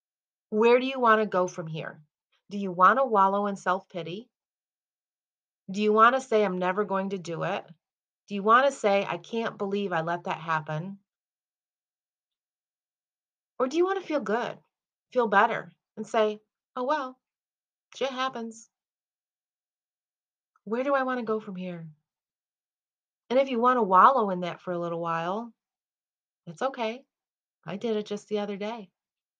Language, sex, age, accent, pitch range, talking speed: English, female, 30-49, American, 180-245 Hz, 165 wpm